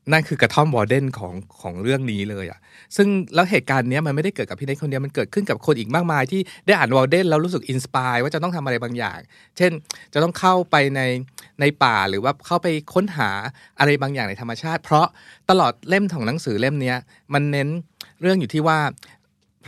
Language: Thai